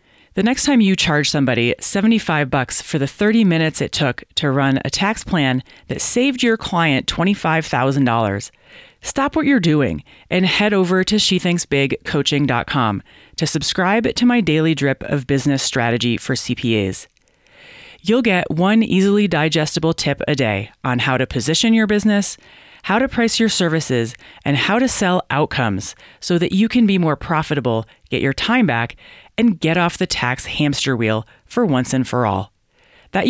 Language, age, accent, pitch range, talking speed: English, 30-49, American, 125-195 Hz, 165 wpm